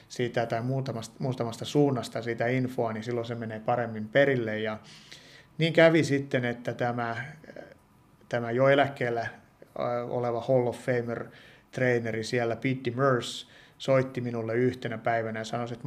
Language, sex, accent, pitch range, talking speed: Finnish, male, native, 115-130 Hz, 135 wpm